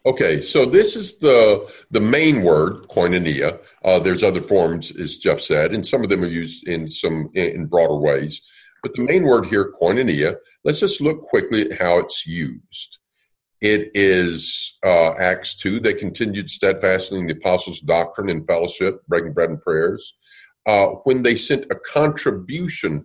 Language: English